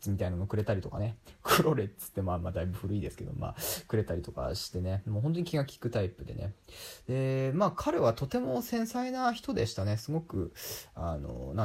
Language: Japanese